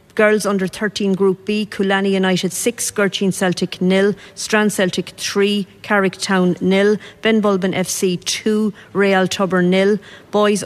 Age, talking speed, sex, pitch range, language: 40-59, 135 wpm, female, 190-205 Hz, English